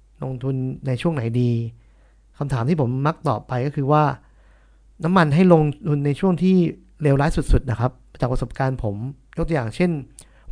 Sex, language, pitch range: male, Thai, 125-155 Hz